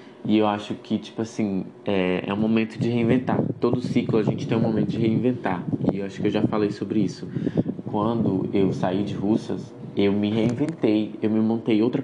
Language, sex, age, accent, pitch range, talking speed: Portuguese, male, 20-39, Brazilian, 105-125 Hz, 210 wpm